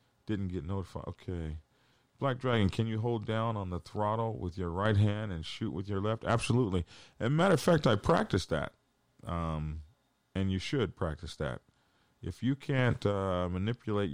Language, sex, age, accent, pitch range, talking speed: English, male, 40-59, American, 90-130 Hz, 180 wpm